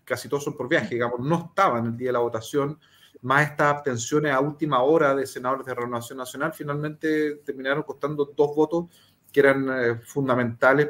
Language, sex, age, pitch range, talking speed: Spanish, male, 30-49, 125-165 Hz, 180 wpm